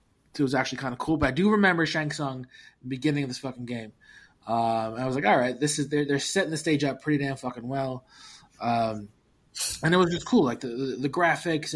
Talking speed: 225 wpm